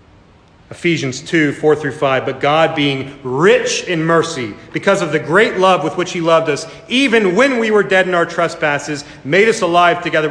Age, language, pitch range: 40-59, English, 160-200 Hz